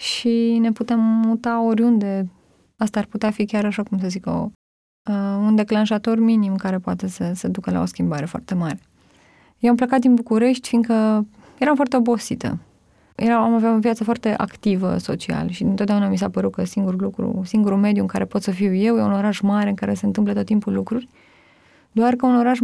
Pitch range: 210-245 Hz